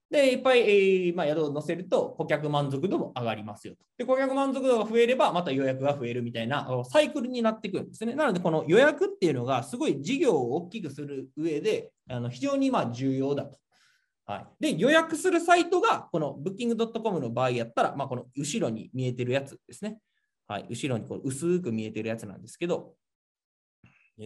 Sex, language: male, Japanese